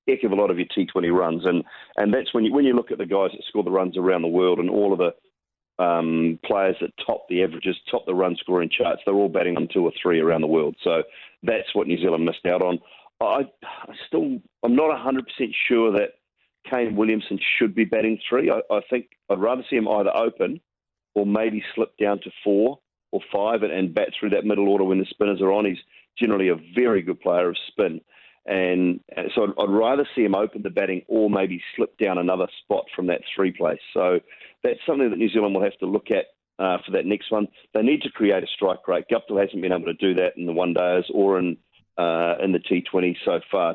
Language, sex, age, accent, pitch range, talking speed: English, male, 40-59, Australian, 90-110 Hz, 240 wpm